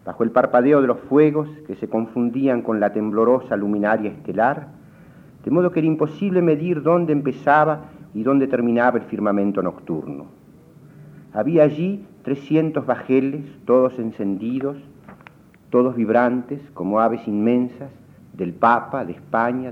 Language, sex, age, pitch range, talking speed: Spanish, male, 50-69, 105-140 Hz, 130 wpm